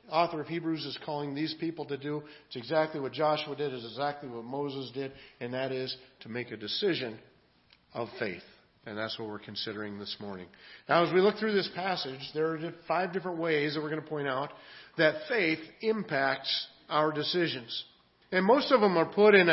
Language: English